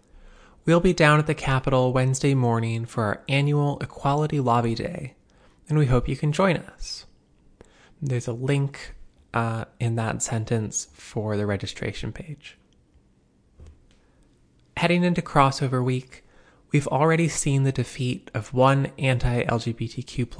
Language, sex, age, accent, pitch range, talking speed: English, male, 20-39, American, 110-135 Hz, 130 wpm